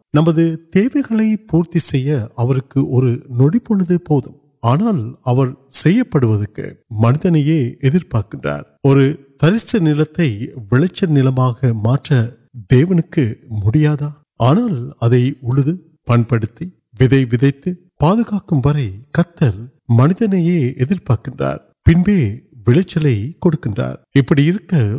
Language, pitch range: Urdu, 125-165 Hz